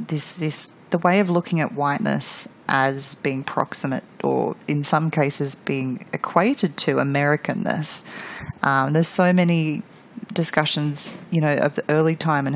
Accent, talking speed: Australian, 150 wpm